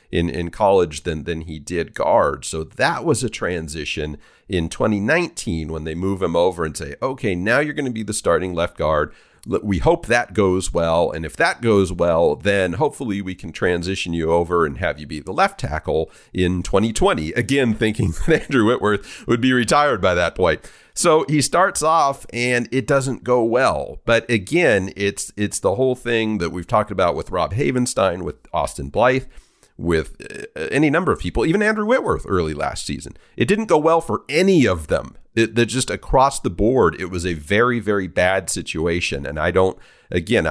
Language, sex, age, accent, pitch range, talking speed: English, male, 40-59, American, 90-125 Hz, 195 wpm